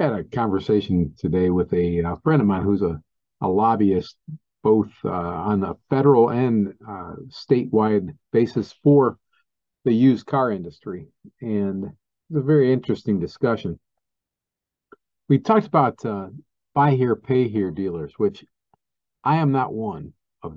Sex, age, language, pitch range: male, 50-69, English, 95-145 Hz